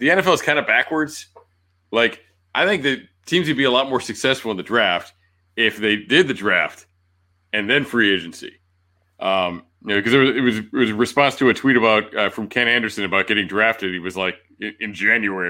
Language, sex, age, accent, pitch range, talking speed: English, male, 30-49, American, 90-125 Hz, 215 wpm